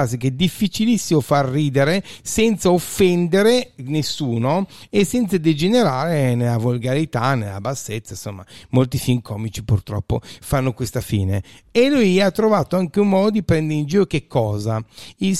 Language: Italian